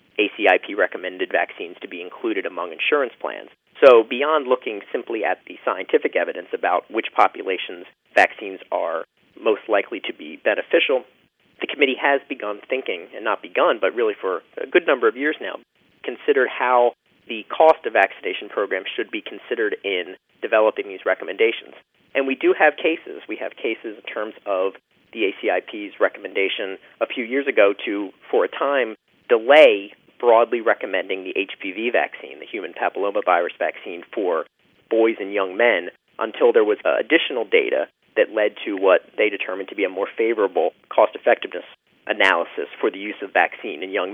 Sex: male